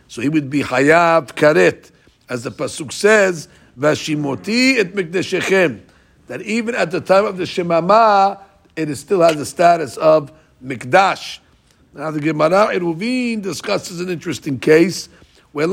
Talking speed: 140 wpm